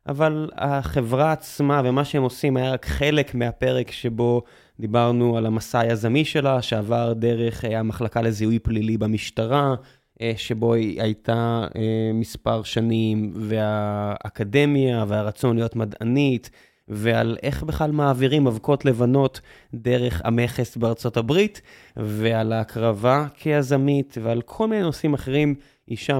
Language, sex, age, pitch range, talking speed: Hebrew, male, 20-39, 110-145 Hz, 115 wpm